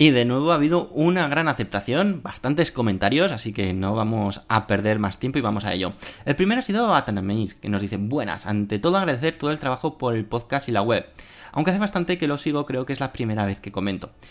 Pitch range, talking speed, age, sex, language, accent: 100-130 Hz, 240 wpm, 20-39, male, Spanish, Spanish